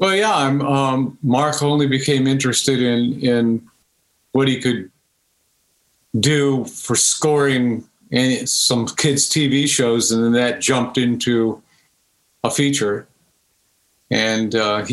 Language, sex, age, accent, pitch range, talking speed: English, male, 50-69, American, 120-145 Hz, 115 wpm